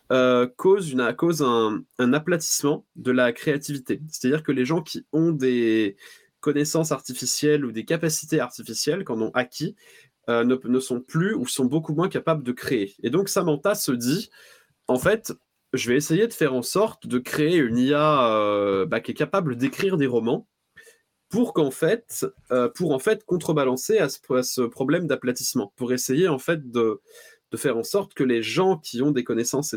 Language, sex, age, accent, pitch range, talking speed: French, male, 20-39, French, 120-160 Hz, 190 wpm